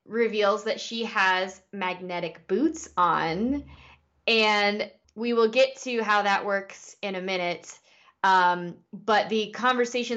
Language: English